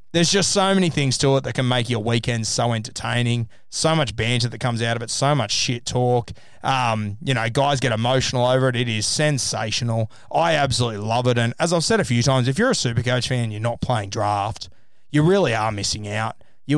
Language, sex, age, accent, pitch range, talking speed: English, male, 20-39, Australian, 115-145 Hz, 225 wpm